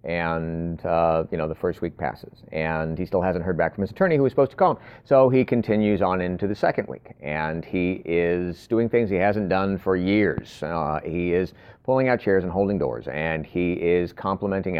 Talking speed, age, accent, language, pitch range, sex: 220 wpm, 40-59, American, English, 95-130 Hz, male